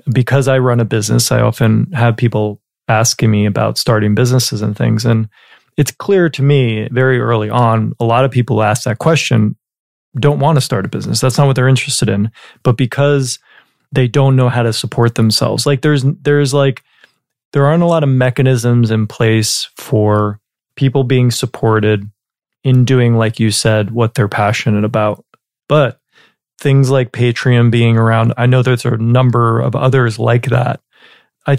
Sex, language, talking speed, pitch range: male, English, 175 wpm, 115-135 Hz